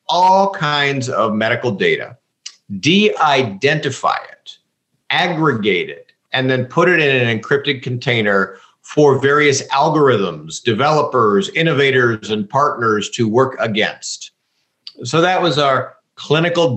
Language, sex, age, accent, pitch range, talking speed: English, male, 50-69, American, 120-155 Hz, 120 wpm